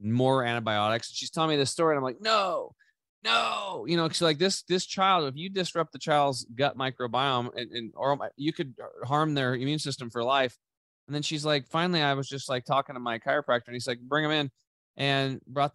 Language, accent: English, American